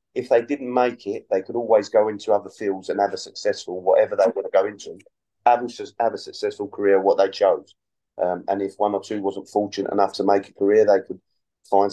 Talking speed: 235 wpm